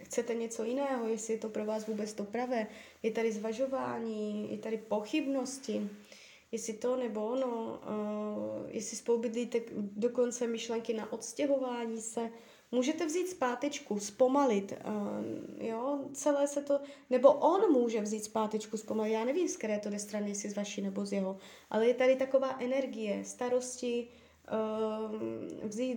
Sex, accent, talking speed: female, native, 140 wpm